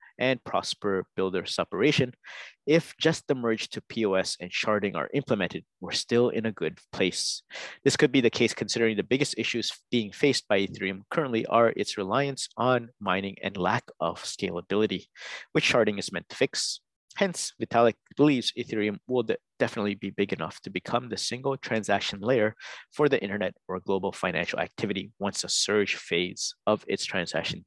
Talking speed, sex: 170 wpm, male